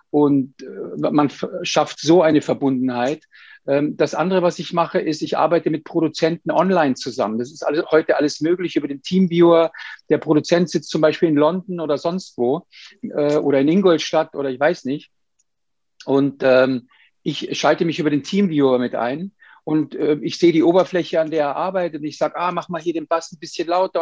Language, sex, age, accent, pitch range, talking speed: German, male, 50-69, German, 150-175 Hz, 185 wpm